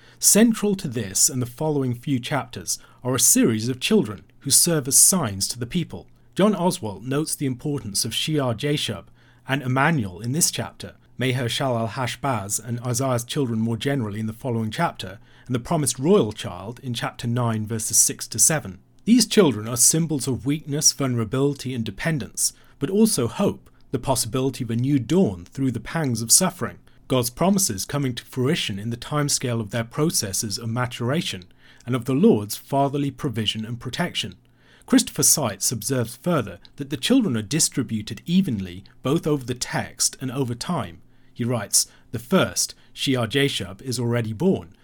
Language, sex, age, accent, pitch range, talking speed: English, male, 40-59, British, 115-145 Hz, 170 wpm